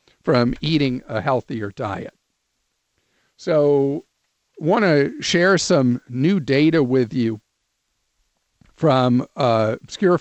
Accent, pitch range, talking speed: American, 125-160 Hz, 95 wpm